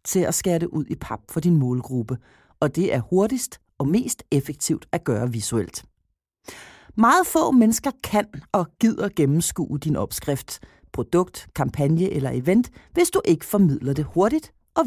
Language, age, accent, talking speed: Danish, 40-59, native, 160 wpm